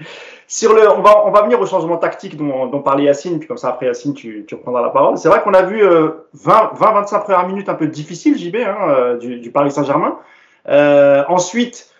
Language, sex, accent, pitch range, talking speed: French, male, French, 155-215 Hz, 225 wpm